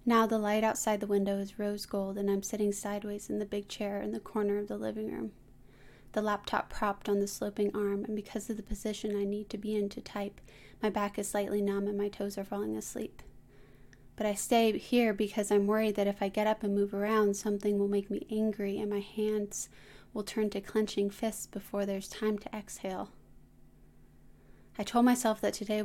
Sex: female